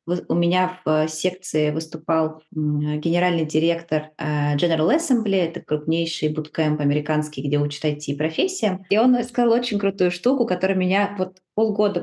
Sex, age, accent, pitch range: female, 20-39, native, 155-195 Hz